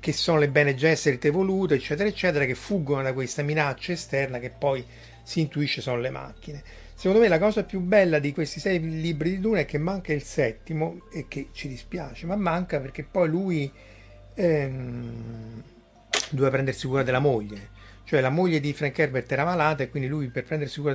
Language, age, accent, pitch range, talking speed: Italian, 30-49, native, 120-155 Hz, 190 wpm